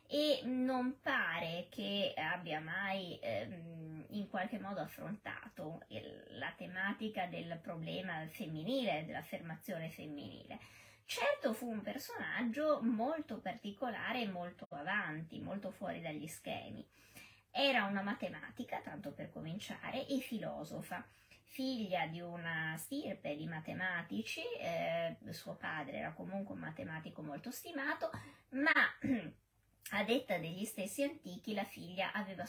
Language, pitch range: Italian, 175-250 Hz